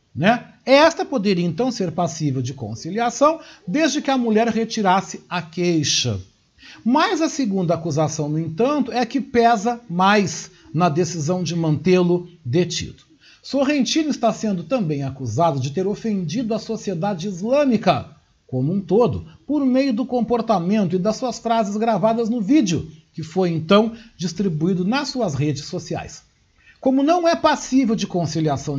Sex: male